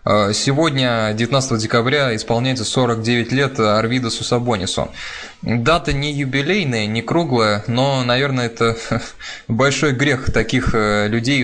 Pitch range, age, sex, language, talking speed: 110-125 Hz, 20-39, male, Russian, 105 wpm